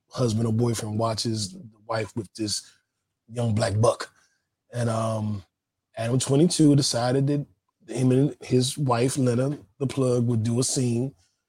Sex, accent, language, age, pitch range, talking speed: male, American, English, 20-39, 110-135 Hz, 145 wpm